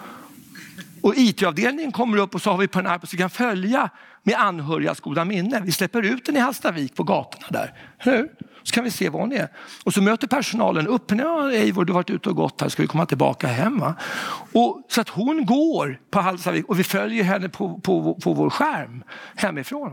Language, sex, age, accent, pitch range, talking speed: Swedish, male, 60-79, native, 175-240 Hz, 225 wpm